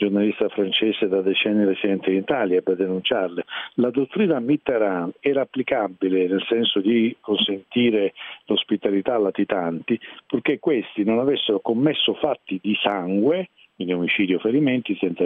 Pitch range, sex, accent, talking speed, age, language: 105-135 Hz, male, native, 135 wpm, 50-69, Italian